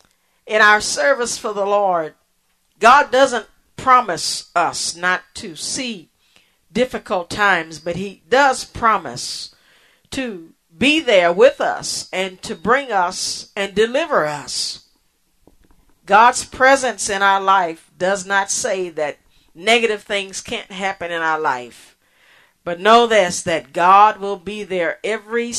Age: 50-69